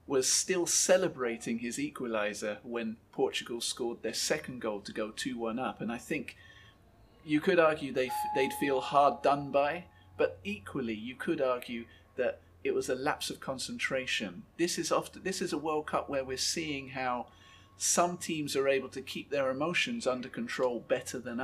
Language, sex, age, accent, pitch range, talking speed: English, male, 30-49, British, 120-175 Hz, 175 wpm